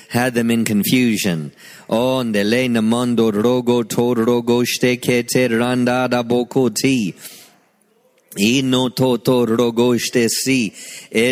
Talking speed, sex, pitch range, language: 105 wpm, male, 100-120 Hz, English